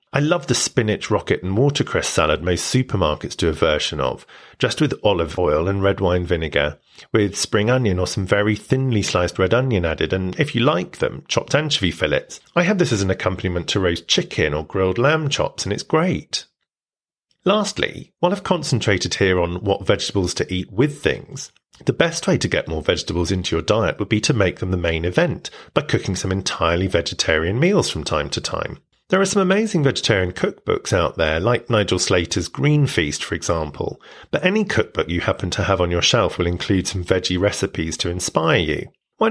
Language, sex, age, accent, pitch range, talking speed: English, male, 40-59, British, 90-140 Hz, 200 wpm